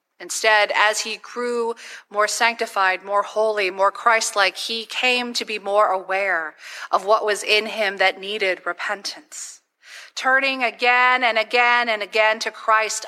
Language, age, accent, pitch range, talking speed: English, 40-59, American, 200-250 Hz, 145 wpm